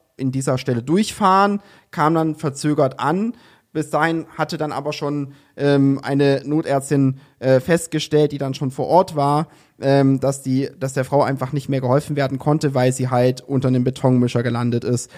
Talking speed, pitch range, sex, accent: 180 wpm, 130-155 Hz, male, German